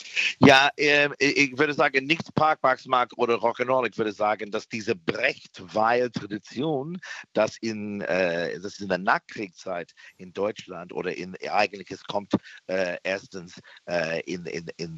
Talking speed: 140 wpm